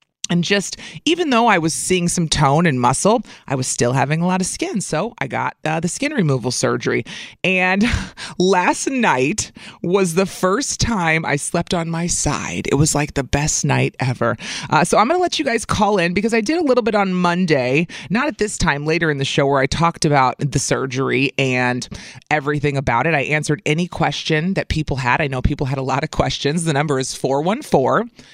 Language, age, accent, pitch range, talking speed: English, 30-49, American, 145-200 Hz, 215 wpm